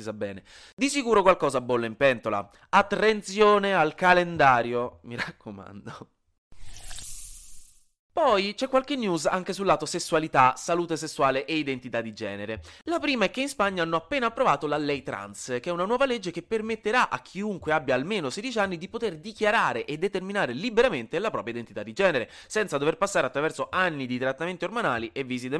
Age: 20-39